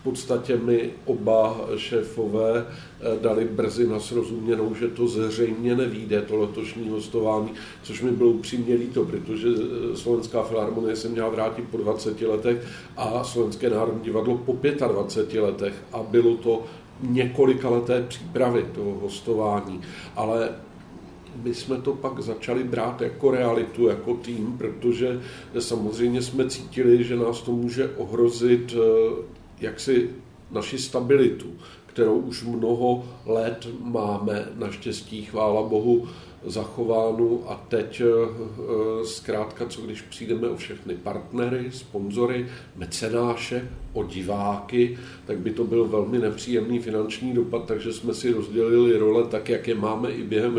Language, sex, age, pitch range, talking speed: Slovak, male, 50-69, 110-120 Hz, 130 wpm